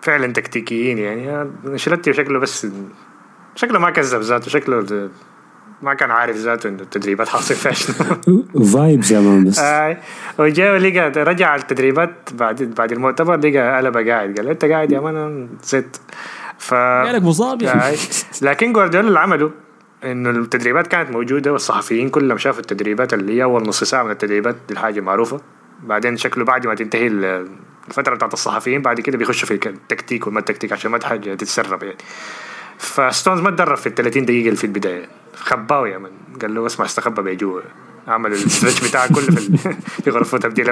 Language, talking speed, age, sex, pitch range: Arabic, 160 wpm, 20-39, male, 110-150 Hz